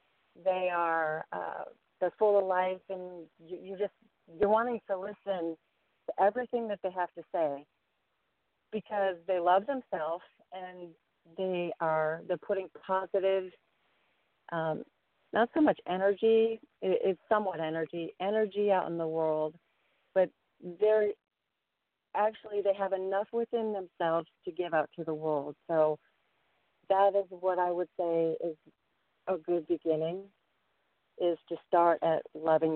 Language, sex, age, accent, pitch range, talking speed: English, female, 40-59, American, 160-195 Hz, 140 wpm